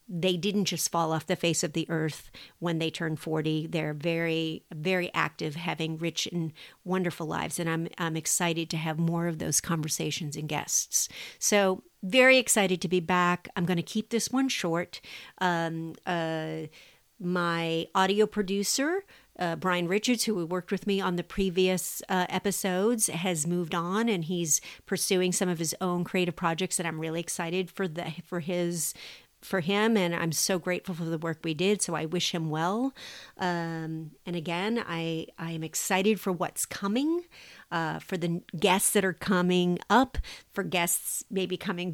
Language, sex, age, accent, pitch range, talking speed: English, female, 50-69, American, 165-190 Hz, 175 wpm